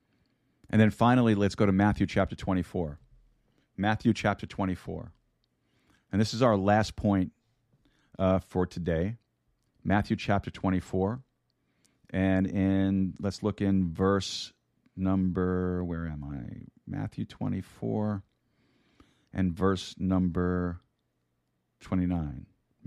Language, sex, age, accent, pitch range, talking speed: English, male, 40-59, American, 90-105 Hz, 105 wpm